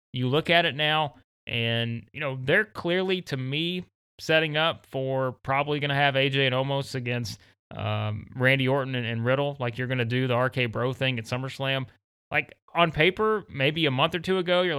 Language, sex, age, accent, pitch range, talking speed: English, male, 30-49, American, 115-140 Hz, 205 wpm